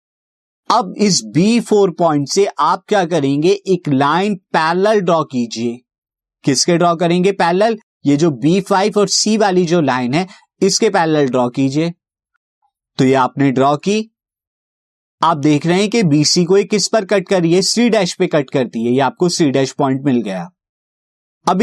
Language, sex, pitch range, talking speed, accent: Hindi, male, 135-195 Hz, 170 wpm, native